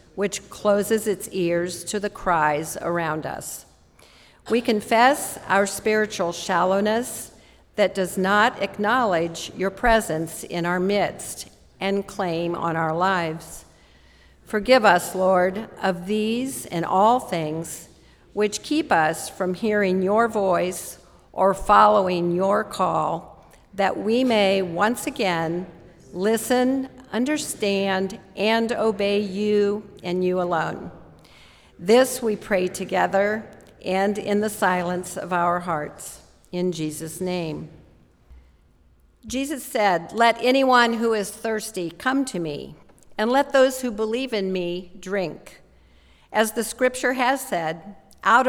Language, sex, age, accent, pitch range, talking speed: English, female, 50-69, American, 175-220 Hz, 120 wpm